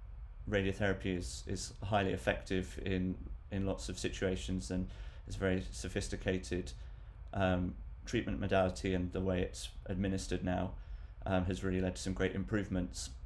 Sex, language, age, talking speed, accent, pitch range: male, English, 30-49, 140 wpm, British, 85-95 Hz